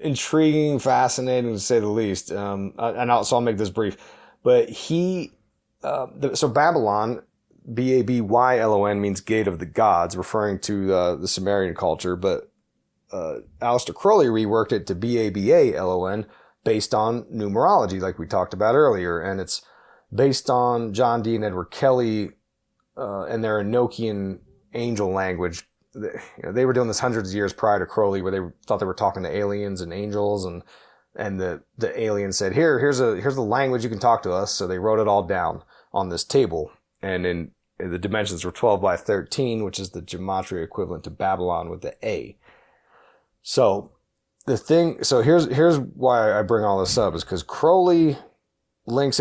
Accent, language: American, English